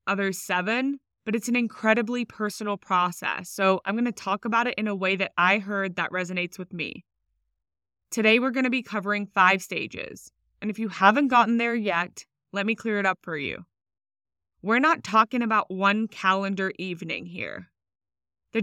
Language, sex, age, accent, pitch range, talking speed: English, female, 20-39, American, 185-230 Hz, 180 wpm